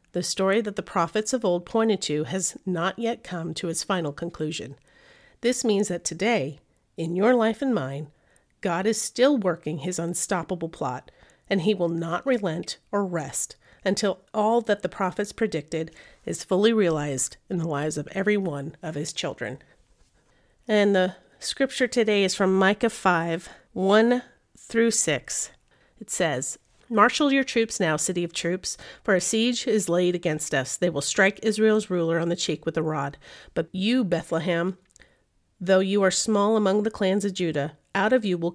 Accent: American